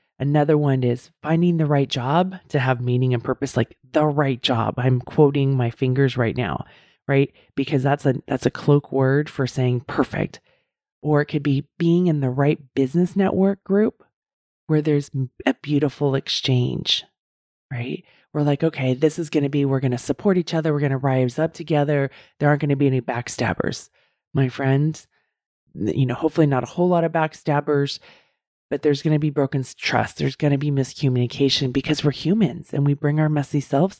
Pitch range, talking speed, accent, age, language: 130-155 Hz, 190 wpm, American, 30-49, English